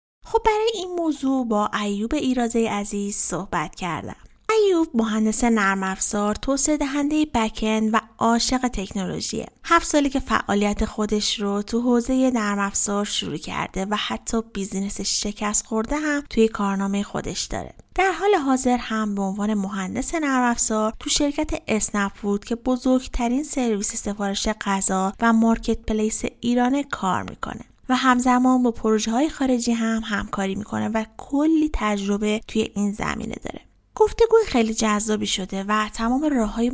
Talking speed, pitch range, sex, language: 140 wpm, 205-260 Hz, female, Persian